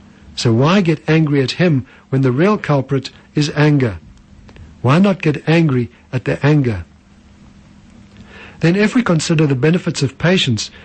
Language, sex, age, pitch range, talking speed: English, male, 60-79, 125-160 Hz, 150 wpm